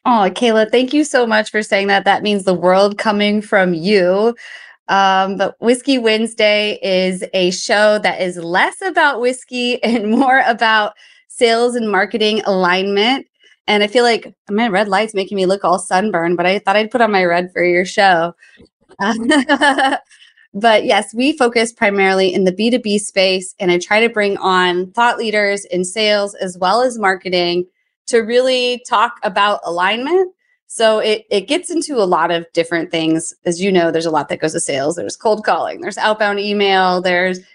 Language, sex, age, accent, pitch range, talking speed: English, female, 20-39, American, 185-230 Hz, 180 wpm